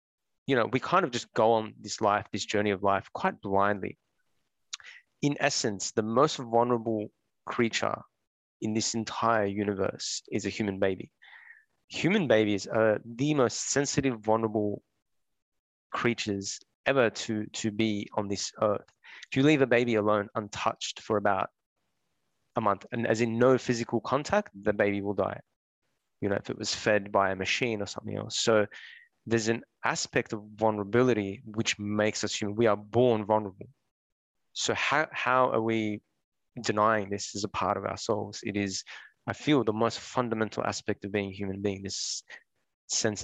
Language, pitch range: English, 100-115 Hz